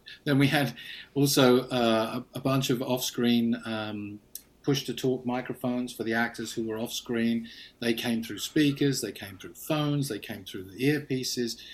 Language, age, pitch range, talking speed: English, 40-59, 115-135 Hz, 160 wpm